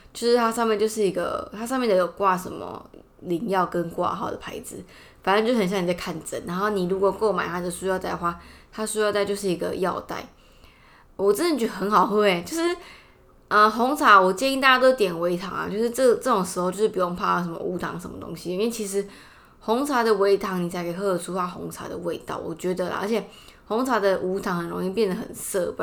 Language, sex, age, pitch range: Chinese, female, 20-39, 180-215 Hz